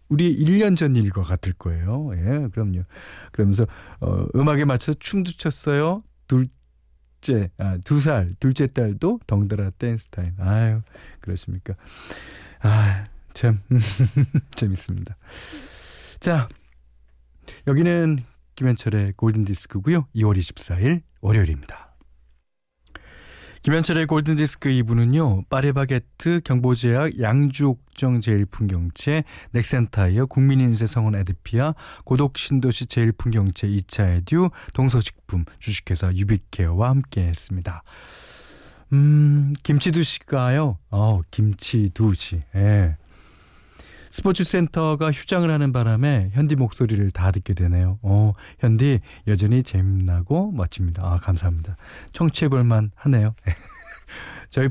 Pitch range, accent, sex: 95-140 Hz, native, male